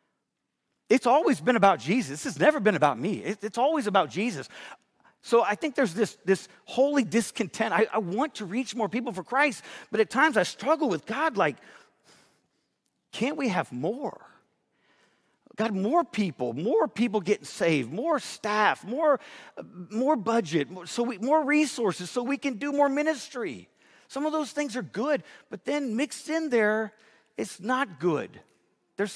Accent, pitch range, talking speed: American, 215-285 Hz, 170 wpm